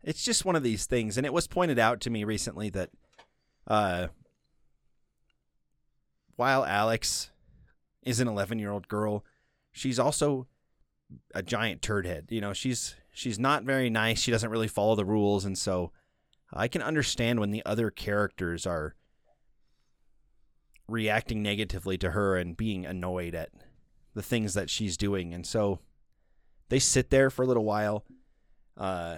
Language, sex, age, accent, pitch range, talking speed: English, male, 30-49, American, 95-120 Hz, 150 wpm